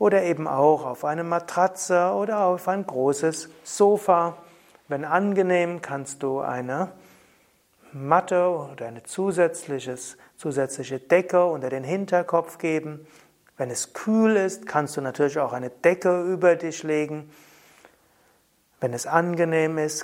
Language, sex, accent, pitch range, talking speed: German, male, German, 140-180 Hz, 125 wpm